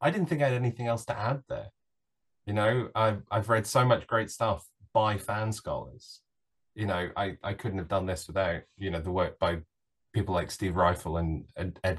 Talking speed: 215 wpm